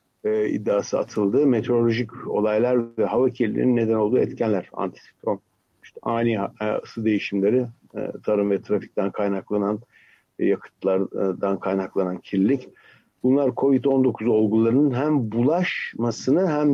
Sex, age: male, 60-79